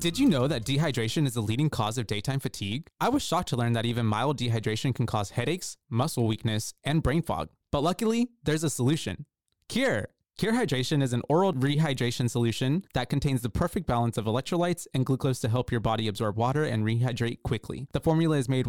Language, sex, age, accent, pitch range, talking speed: English, male, 20-39, American, 115-155 Hz, 205 wpm